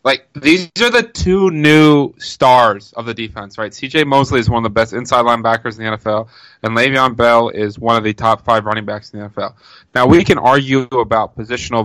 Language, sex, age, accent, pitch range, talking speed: English, male, 20-39, American, 115-140 Hz, 220 wpm